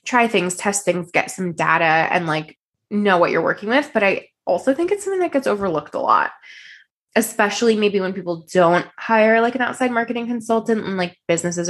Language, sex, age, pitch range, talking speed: English, female, 20-39, 175-220 Hz, 200 wpm